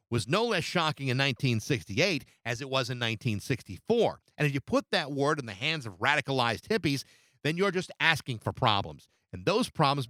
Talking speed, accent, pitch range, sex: 190 wpm, American, 125-165 Hz, male